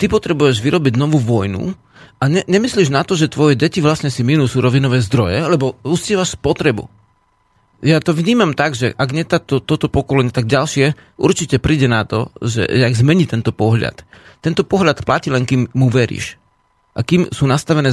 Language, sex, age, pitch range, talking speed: Slovak, male, 40-59, 120-160 Hz, 175 wpm